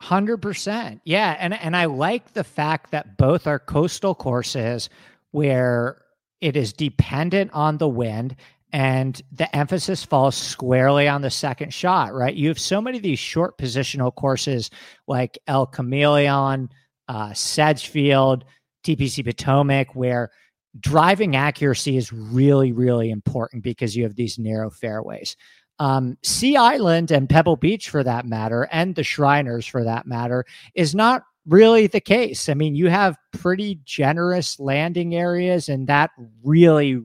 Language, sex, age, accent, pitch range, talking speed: English, male, 50-69, American, 125-155 Hz, 145 wpm